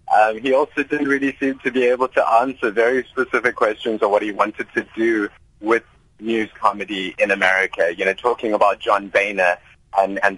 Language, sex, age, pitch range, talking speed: English, male, 30-49, 110-155 Hz, 190 wpm